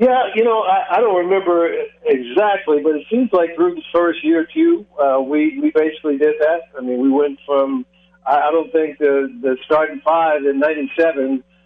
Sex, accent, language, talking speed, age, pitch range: male, American, English, 190 wpm, 60-79, 140-180 Hz